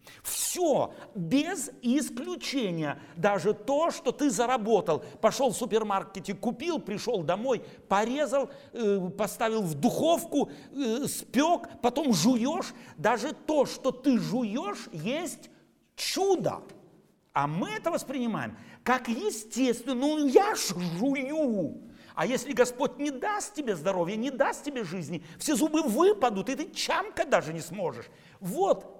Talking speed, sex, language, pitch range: 120 wpm, male, Russian, 200-275 Hz